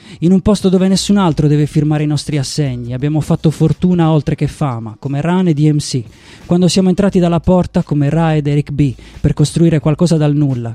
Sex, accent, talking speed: male, native, 200 wpm